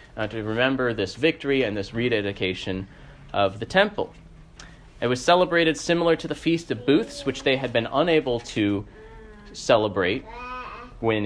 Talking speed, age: 150 wpm, 30-49